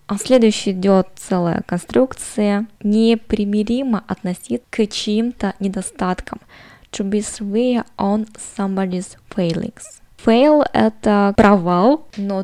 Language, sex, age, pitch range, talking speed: Russian, female, 20-39, 190-220 Hz, 90 wpm